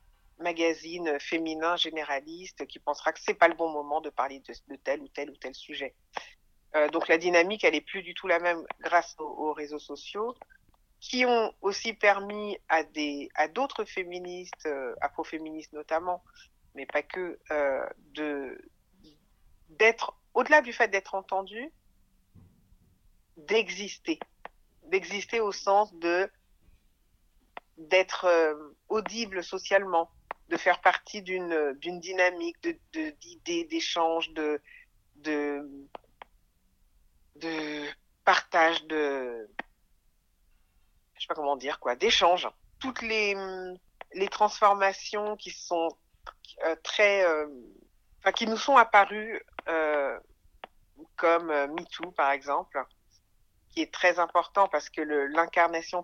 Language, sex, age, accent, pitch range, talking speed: French, female, 50-69, French, 150-200 Hz, 130 wpm